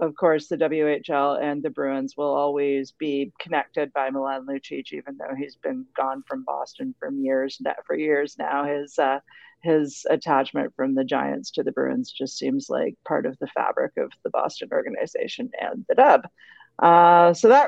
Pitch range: 160-235 Hz